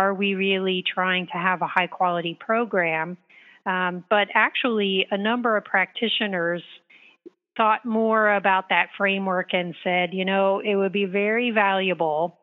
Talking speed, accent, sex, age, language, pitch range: 150 wpm, American, female, 40-59, English, 180-210 Hz